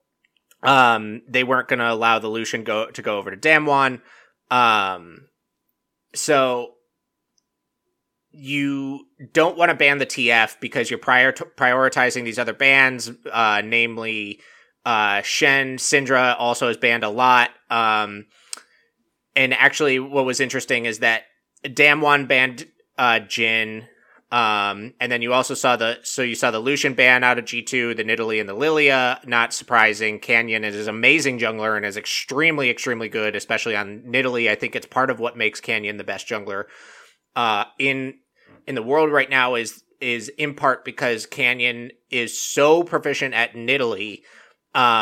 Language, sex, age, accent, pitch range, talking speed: English, male, 20-39, American, 115-135 Hz, 155 wpm